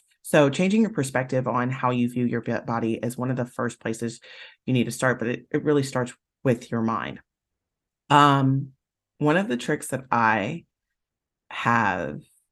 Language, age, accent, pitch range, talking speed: English, 30-49, American, 120-170 Hz, 175 wpm